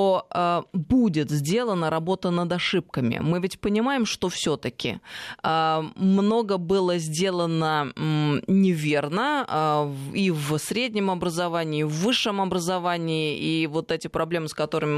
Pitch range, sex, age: 145-185 Hz, female, 20-39